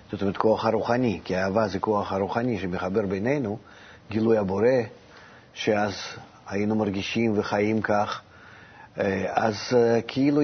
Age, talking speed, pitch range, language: 50-69, 115 wpm, 105-130 Hz, Hebrew